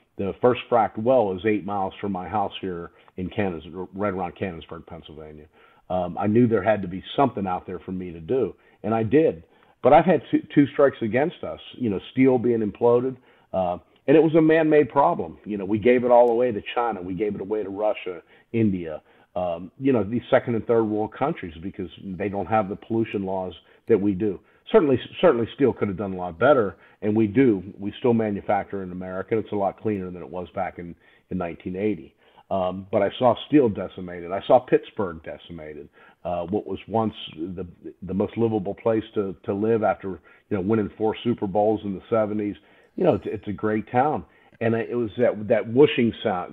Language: English